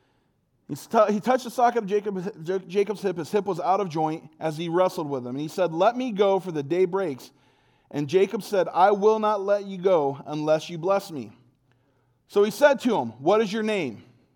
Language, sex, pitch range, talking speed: English, male, 140-195 Hz, 210 wpm